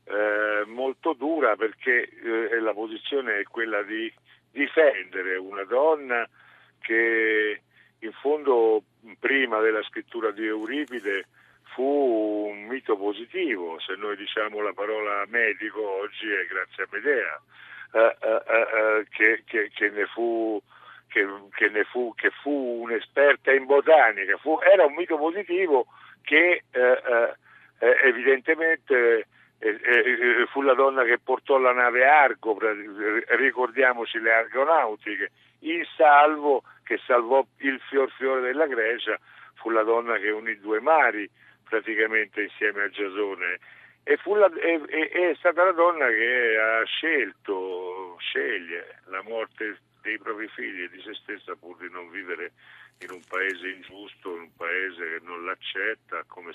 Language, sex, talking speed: Italian, male, 140 wpm